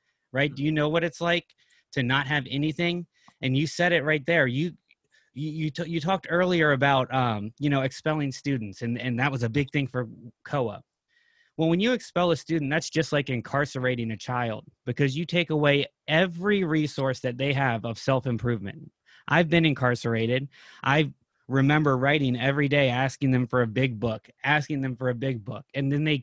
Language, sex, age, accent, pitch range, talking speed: English, male, 20-39, American, 125-150 Hz, 190 wpm